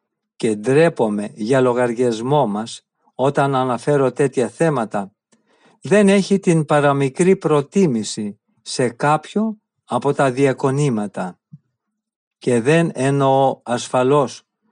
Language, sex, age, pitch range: Greek, male, 50-69, 135-180 Hz